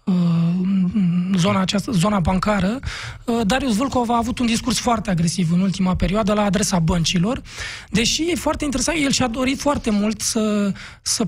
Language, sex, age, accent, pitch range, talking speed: Romanian, male, 20-39, native, 195-245 Hz, 150 wpm